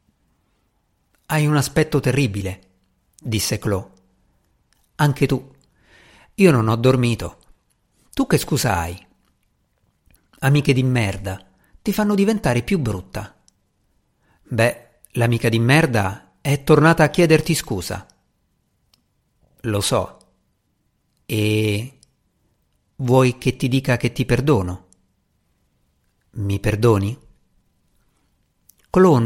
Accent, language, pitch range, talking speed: native, Italian, 100-145 Hz, 95 wpm